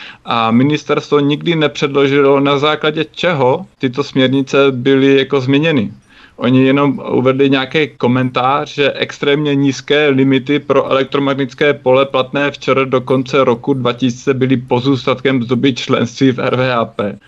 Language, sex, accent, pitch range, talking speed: Czech, male, native, 125-135 Hz, 125 wpm